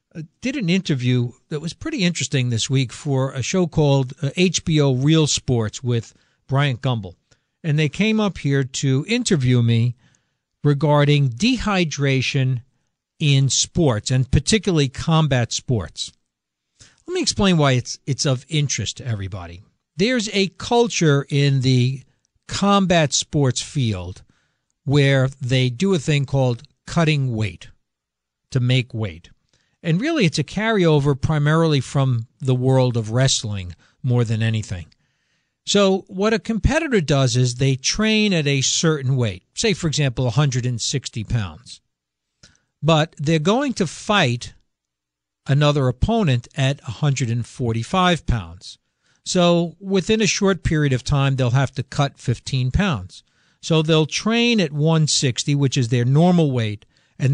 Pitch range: 120-160 Hz